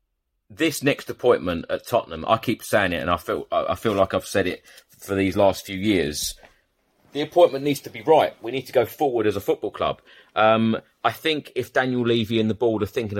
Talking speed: 225 wpm